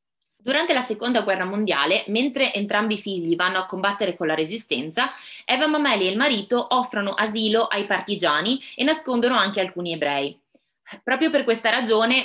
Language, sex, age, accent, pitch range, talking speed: Italian, female, 20-39, native, 185-240 Hz, 160 wpm